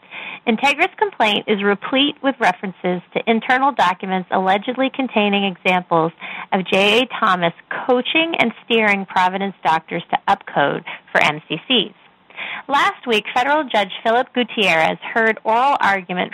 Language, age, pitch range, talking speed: English, 30-49, 190-255 Hz, 120 wpm